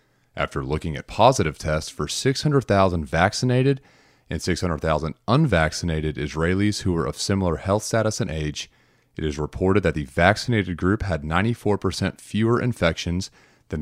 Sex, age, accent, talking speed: male, 30-49, American, 140 wpm